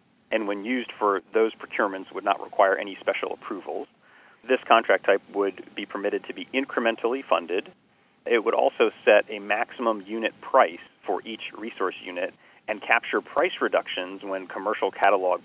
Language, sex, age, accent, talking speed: English, male, 40-59, American, 160 wpm